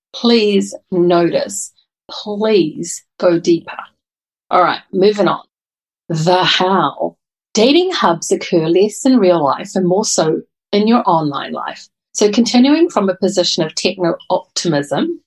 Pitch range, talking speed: 175-240 Hz, 125 wpm